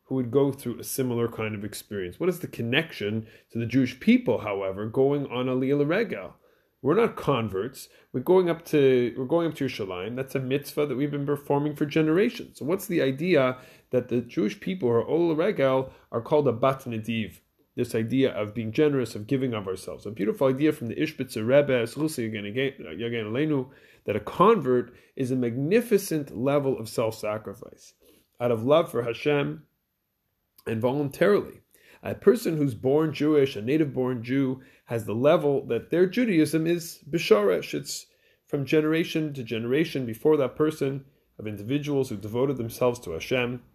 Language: English